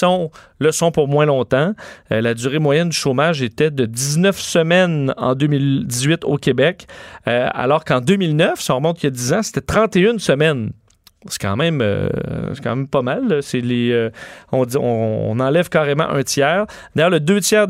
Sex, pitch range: male, 130-170 Hz